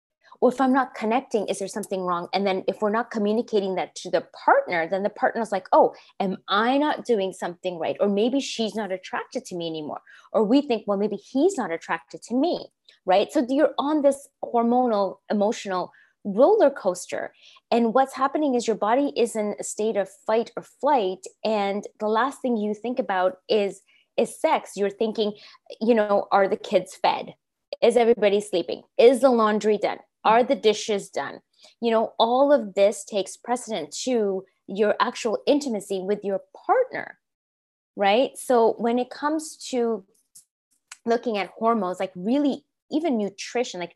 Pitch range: 190-245 Hz